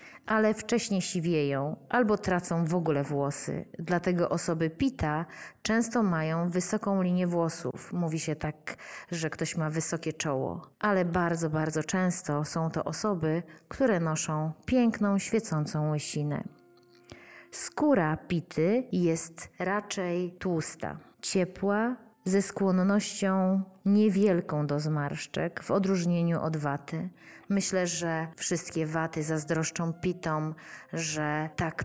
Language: Polish